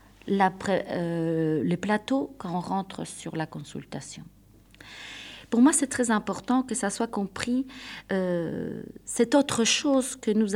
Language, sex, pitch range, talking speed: French, female, 180-245 Hz, 150 wpm